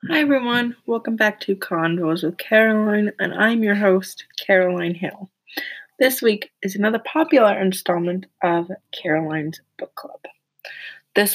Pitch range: 185-225 Hz